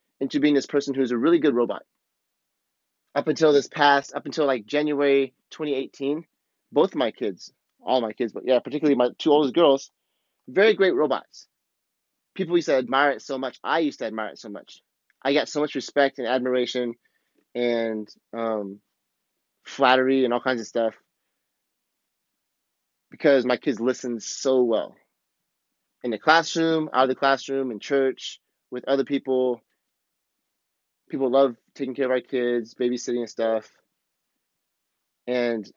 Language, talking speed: English, 155 wpm